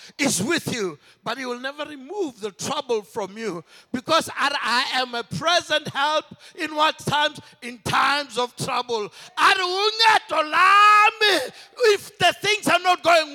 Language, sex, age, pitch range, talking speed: English, male, 60-79, 270-370 Hz, 140 wpm